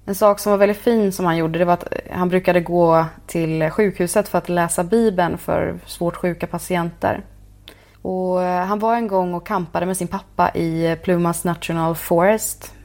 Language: English